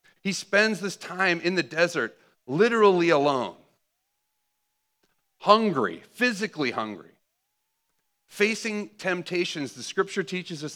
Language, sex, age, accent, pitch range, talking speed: English, male, 40-59, American, 140-175 Hz, 100 wpm